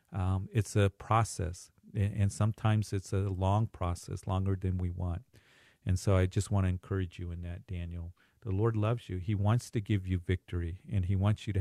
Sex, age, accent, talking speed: male, 50-69, American, 205 wpm